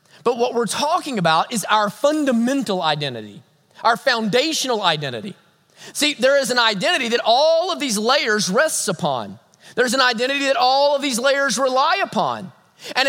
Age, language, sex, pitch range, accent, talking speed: 30-49, English, male, 195-275 Hz, American, 160 wpm